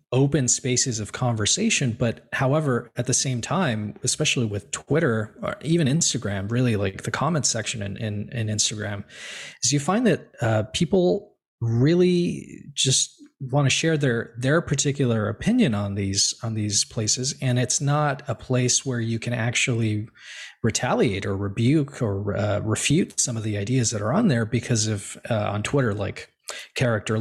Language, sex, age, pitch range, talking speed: English, male, 20-39, 110-140 Hz, 165 wpm